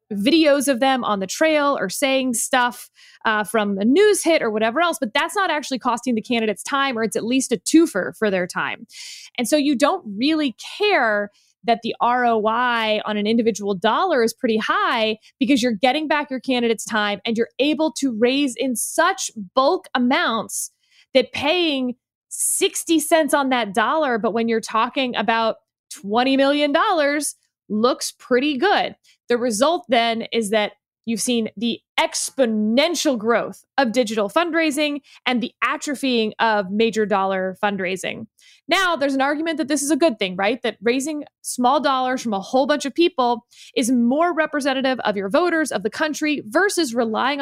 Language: English